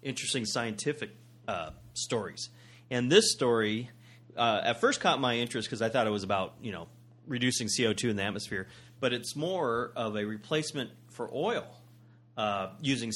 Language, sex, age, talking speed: English, male, 30-49, 165 wpm